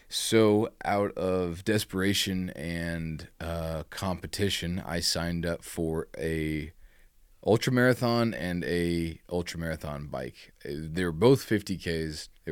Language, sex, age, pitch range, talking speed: English, male, 30-49, 80-95 Hz, 105 wpm